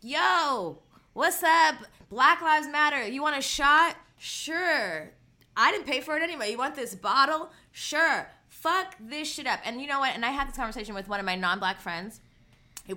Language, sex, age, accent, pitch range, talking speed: English, female, 20-39, American, 200-270 Hz, 195 wpm